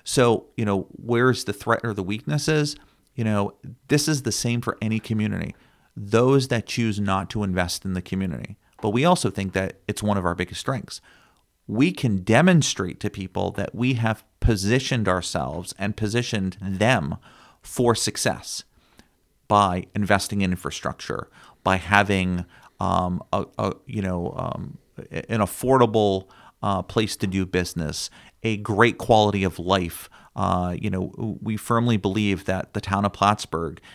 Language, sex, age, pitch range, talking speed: English, male, 40-59, 95-115 Hz, 155 wpm